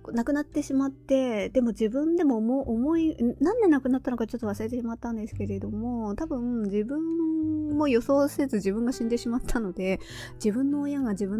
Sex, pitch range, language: female, 195-255 Hz, Japanese